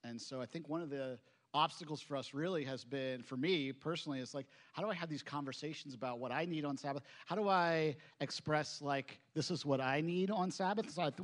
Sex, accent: male, American